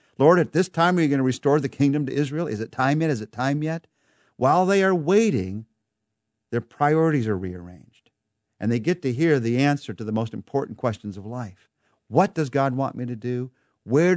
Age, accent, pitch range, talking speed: 50-69, American, 110-155 Hz, 215 wpm